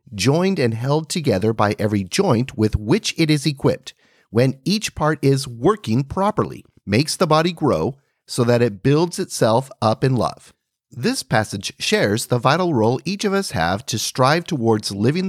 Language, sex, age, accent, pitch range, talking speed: English, male, 40-59, American, 110-155 Hz, 175 wpm